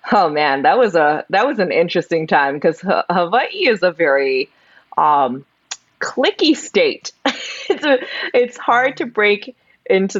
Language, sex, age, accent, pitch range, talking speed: English, female, 20-39, American, 145-195 Hz, 155 wpm